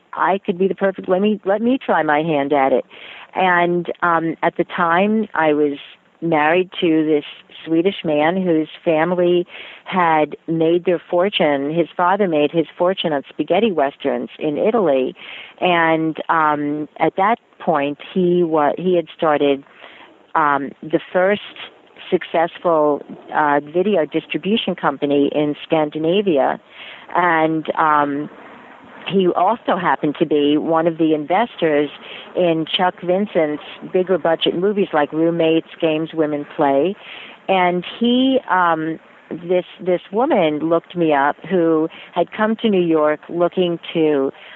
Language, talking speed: English, 135 wpm